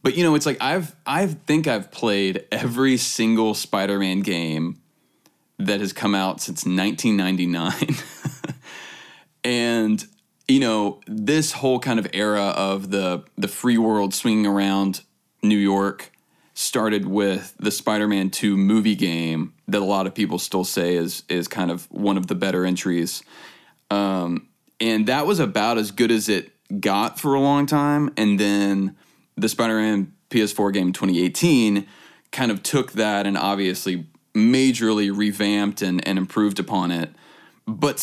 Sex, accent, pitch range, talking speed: male, American, 100-130 Hz, 150 wpm